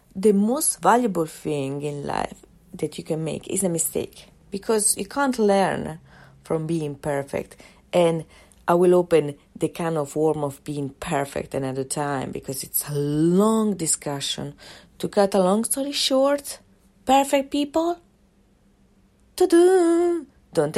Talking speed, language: 140 wpm, English